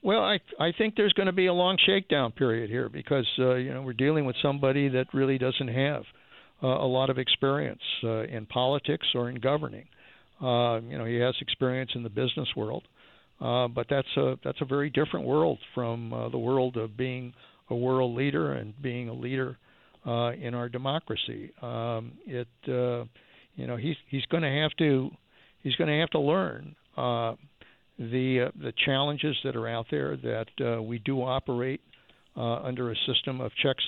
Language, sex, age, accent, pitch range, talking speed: English, male, 60-79, American, 120-140 Hz, 195 wpm